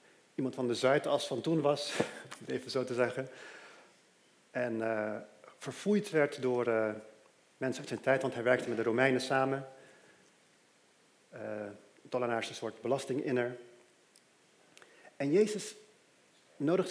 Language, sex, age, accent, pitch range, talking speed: Dutch, male, 40-59, Dutch, 125-165 Hz, 125 wpm